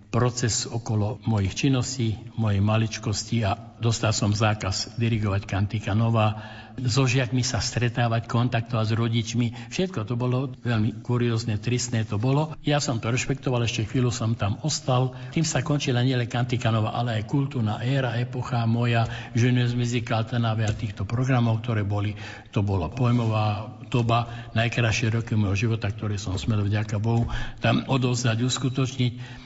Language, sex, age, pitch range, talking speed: Slovak, male, 60-79, 105-120 Hz, 145 wpm